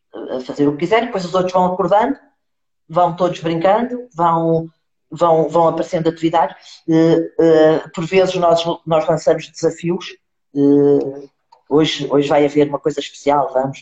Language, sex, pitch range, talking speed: Portuguese, female, 140-180 Hz, 140 wpm